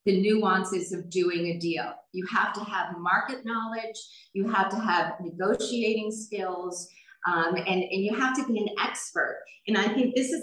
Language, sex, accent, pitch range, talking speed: English, female, American, 185-225 Hz, 185 wpm